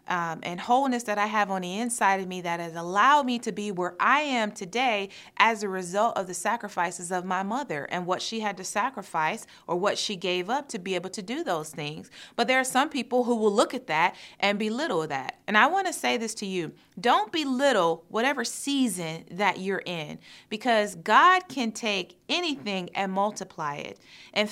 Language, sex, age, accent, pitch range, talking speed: English, female, 30-49, American, 180-225 Hz, 205 wpm